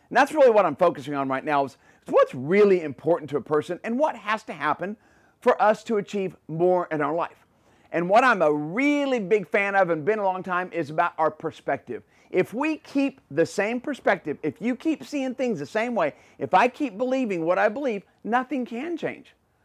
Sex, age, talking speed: male, 40-59, 215 wpm